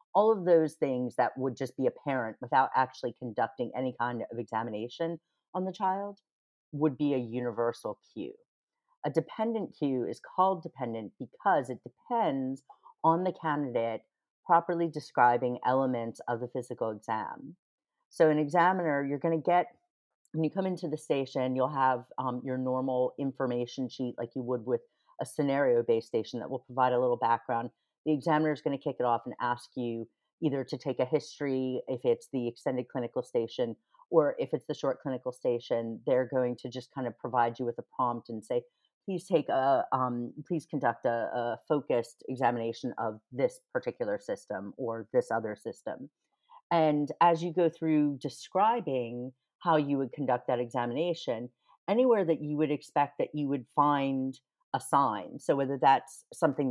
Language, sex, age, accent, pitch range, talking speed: English, female, 40-59, American, 125-170 Hz, 170 wpm